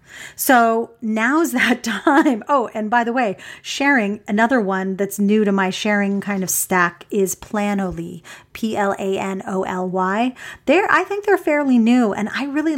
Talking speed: 180 wpm